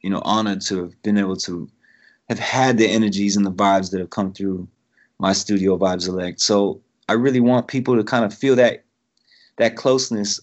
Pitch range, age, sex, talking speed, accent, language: 95-115 Hz, 30-49, male, 200 wpm, American, English